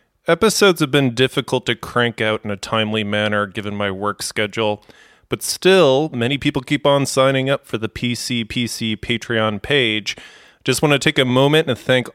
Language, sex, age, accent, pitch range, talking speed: English, male, 20-39, American, 110-140 Hz, 185 wpm